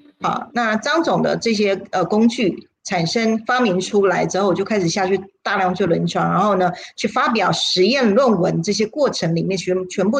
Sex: female